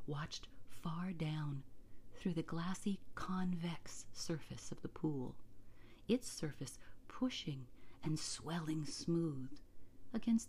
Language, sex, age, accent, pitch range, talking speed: English, female, 40-59, American, 115-185 Hz, 105 wpm